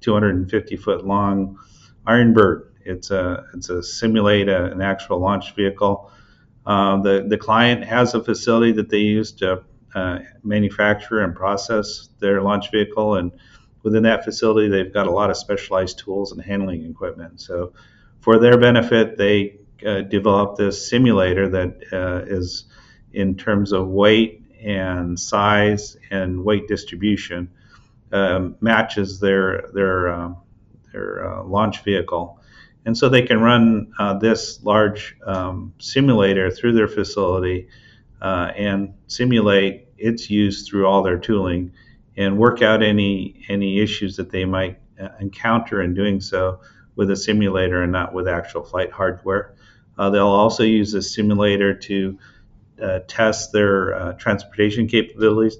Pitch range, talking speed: 95-110 Hz, 145 wpm